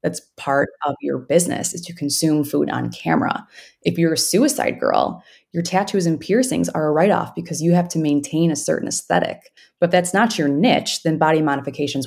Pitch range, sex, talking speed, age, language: 145-185 Hz, female, 200 wpm, 20-39, English